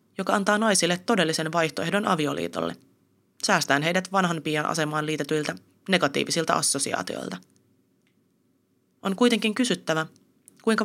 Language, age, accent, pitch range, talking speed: Finnish, 30-49, native, 145-180 Hz, 95 wpm